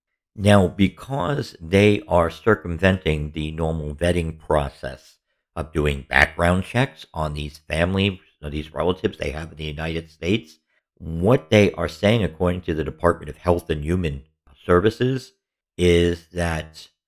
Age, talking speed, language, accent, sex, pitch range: 50-69, 135 wpm, English, American, male, 80-95 Hz